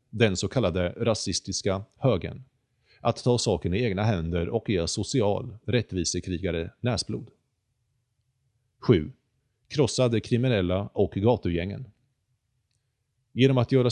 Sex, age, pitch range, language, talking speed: male, 30-49, 95-125 Hz, Swedish, 105 wpm